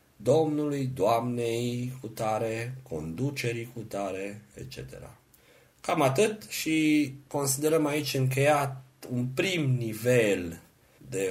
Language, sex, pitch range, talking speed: Romanian, male, 100-135 Hz, 95 wpm